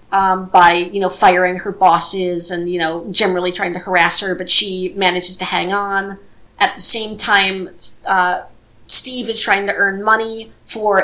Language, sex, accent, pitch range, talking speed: English, female, American, 185-210 Hz, 180 wpm